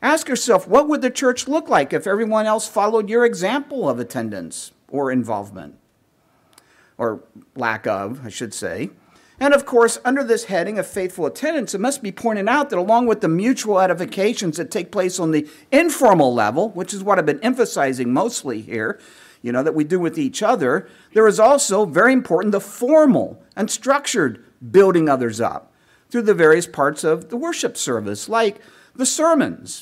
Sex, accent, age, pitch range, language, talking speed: male, American, 50-69, 155-245 Hz, English, 180 wpm